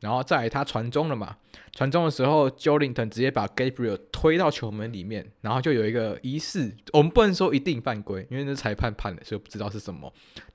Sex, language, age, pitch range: male, Chinese, 20-39, 105-145 Hz